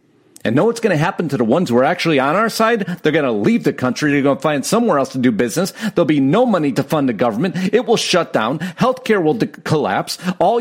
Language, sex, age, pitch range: English, male, 40-59, 170-225 Hz